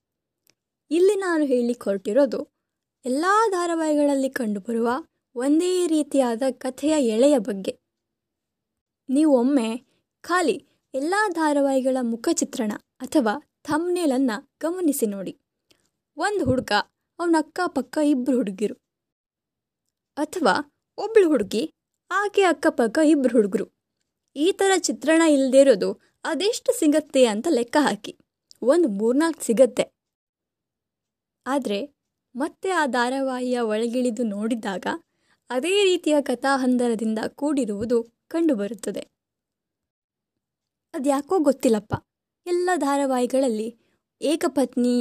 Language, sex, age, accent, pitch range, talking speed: Kannada, female, 20-39, native, 235-310 Hz, 90 wpm